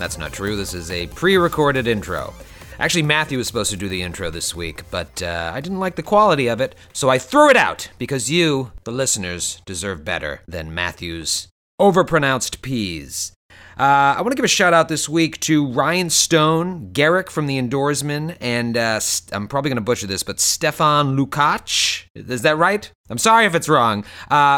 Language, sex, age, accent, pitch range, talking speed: English, male, 30-49, American, 105-170 Hz, 195 wpm